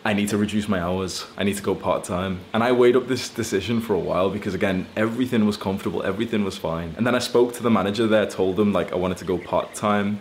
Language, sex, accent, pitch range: English, male, British, 105-125 Hz